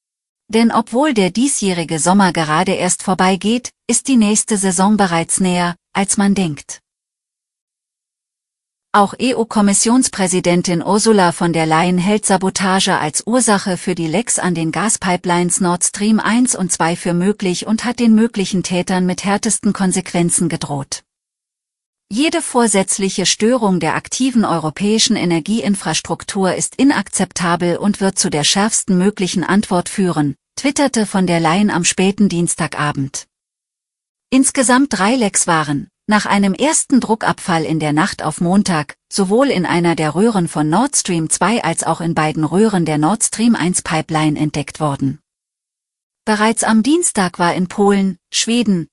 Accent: German